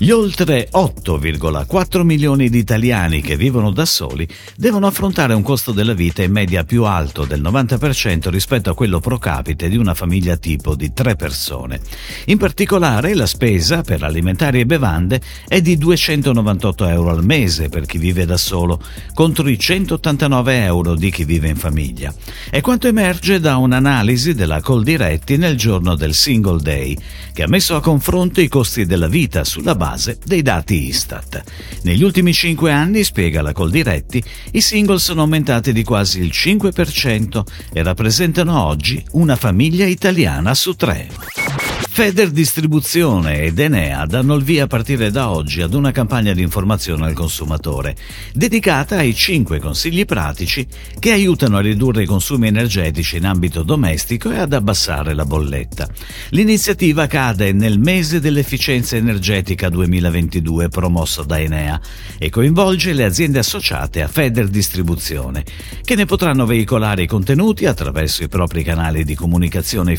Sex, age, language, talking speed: male, 50-69, Italian, 155 wpm